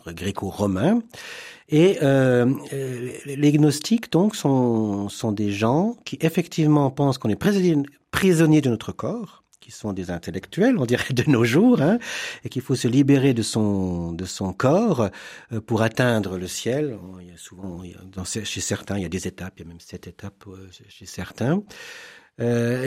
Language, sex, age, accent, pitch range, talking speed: French, male, 50-69, French, 100-150 Hz, 175 wpm